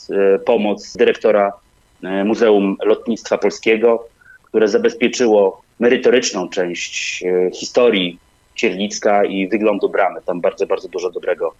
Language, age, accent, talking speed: Polish, 30-49, native, 100 wpm